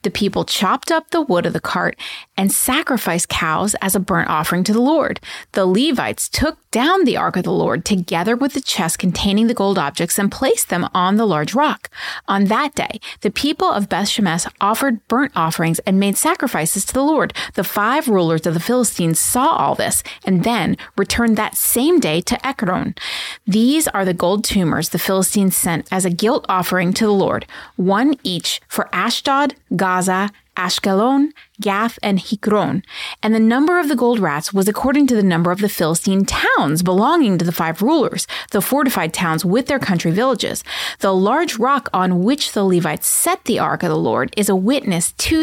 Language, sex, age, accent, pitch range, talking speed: English, female, 30-49, American, 185-260 Hz, 195 wpm